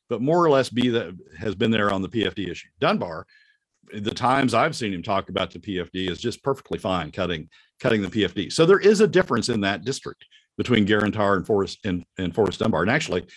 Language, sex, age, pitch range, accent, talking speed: English, male, 50-69, 95-130 Hz, American, 220 wpm